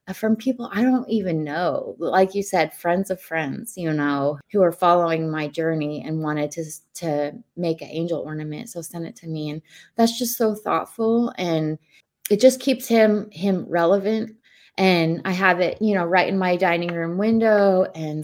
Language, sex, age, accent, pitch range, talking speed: English, female, 20-39, American, 160-195 Hz, 190 wpm